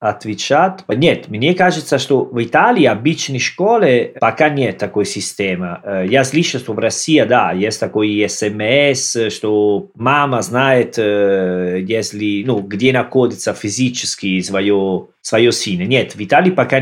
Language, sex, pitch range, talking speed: Russian, male, 105-130 Hz, 130 wpm